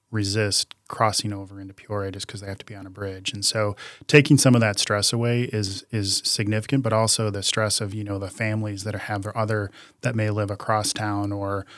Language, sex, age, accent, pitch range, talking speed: English, male, 20-39, American, 105-120 Hz, 230 wpm